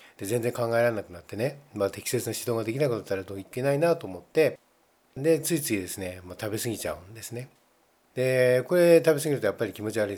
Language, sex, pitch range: Japanese, male, 110-150 Hz